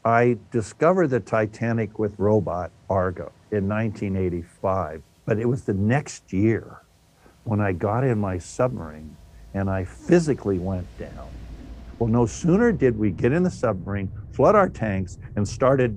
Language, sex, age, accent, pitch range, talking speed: English, male, 60-79, American, 95-120 Hz, 150 wpm